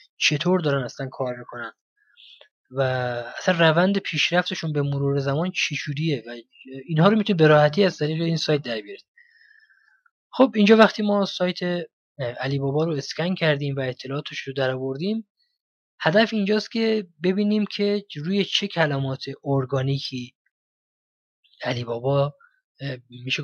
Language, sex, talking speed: Persian, male, 135 wpm